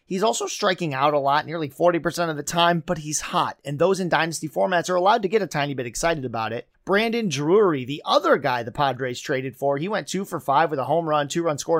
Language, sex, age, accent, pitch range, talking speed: English, male, 30-49, American, 145-180 Hz, 255 wpm